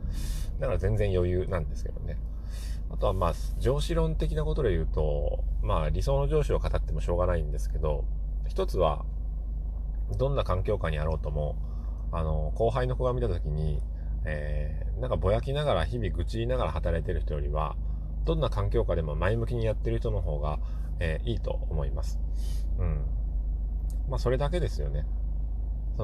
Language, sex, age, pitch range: Japanese, male, 30-49, 75-100 Hz